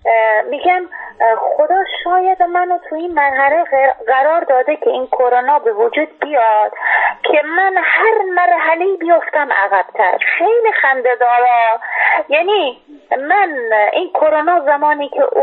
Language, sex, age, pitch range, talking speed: Persian, female, 30-49, 265-375 Hz, 115 wpm